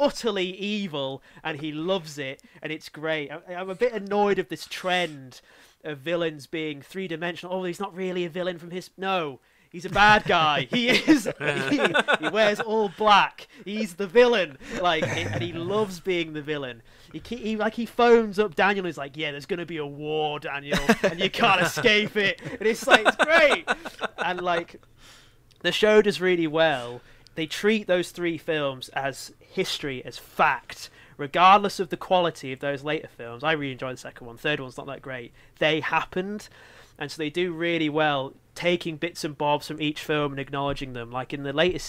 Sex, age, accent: male, 20-39, British